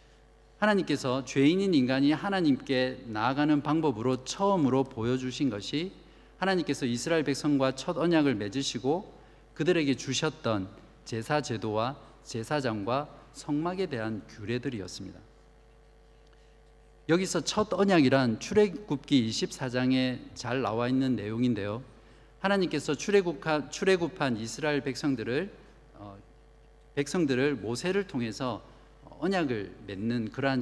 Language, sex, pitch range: Korean, male, 120-155 Hz